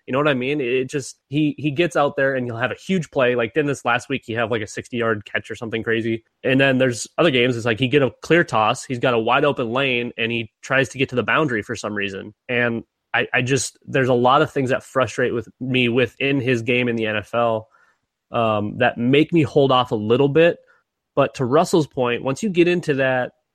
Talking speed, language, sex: 250 wpm, English, male